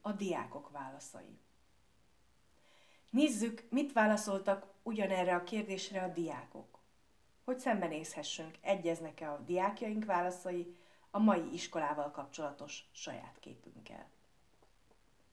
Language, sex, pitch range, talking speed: Hungarian, female, 165-210 Hz, 90 wpm